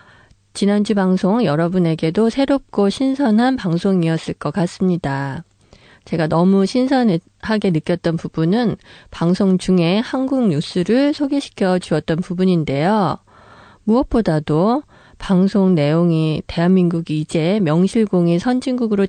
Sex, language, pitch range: female, Korean, 165-205 Hz